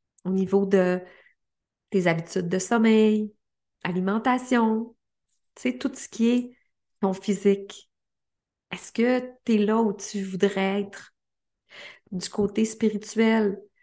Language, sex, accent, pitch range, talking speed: French, female, Canadian, 195-235 Hz, 115 wpm